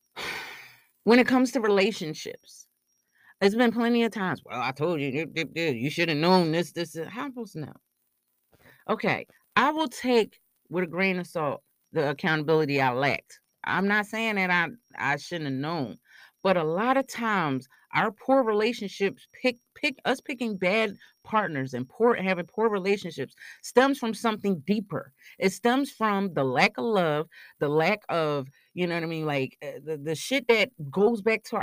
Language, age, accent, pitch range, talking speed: English, 40-59, American, 150-225 Hz, 180 wpm